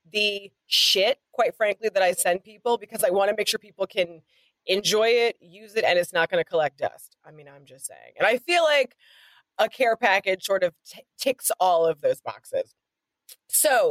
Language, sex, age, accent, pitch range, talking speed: English, female, 30-49, American, 185-245 Hz, 205 wpm